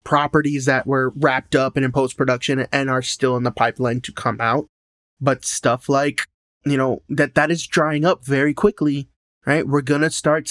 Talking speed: 195 wpm